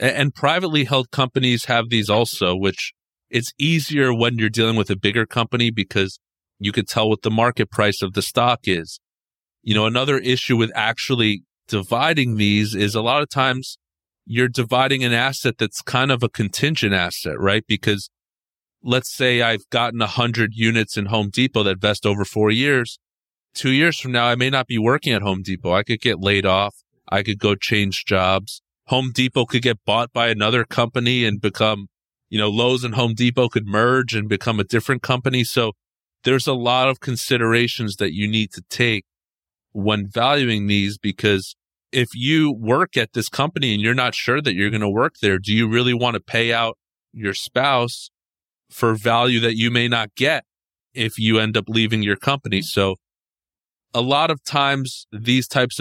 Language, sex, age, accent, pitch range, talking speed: English, male, 30-49, American, 105-125 Hz, 190 wpm